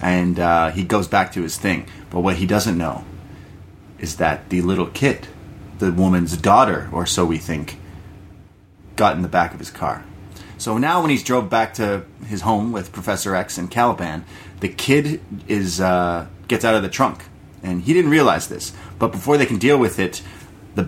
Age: 30-49